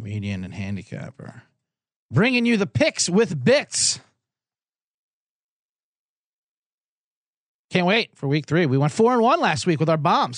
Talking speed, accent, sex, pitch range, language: 140 wpm, American, male, 125-200 Hz, English